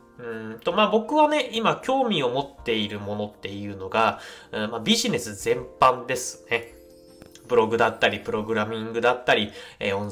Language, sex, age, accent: Japanese, male, 20-39, native